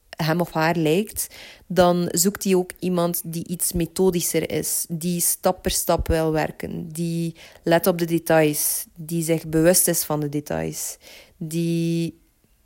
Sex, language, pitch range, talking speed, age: female, Dutch, 150-175 Hz, 150 wpm, 20-39